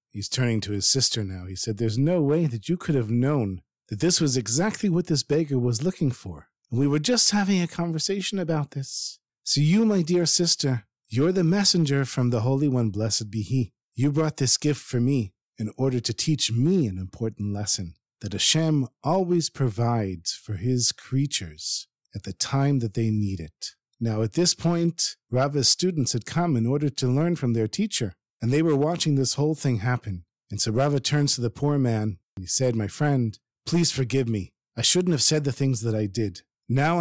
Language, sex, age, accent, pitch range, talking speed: English, male, 50-69, American, 110-155 Hz, 205 wpm